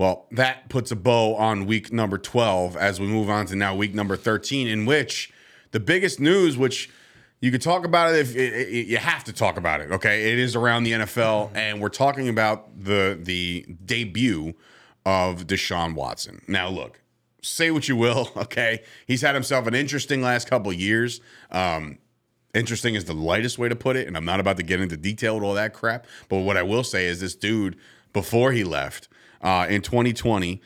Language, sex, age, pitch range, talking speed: English, male, 30-49, 100-130 Hz, 205 wpm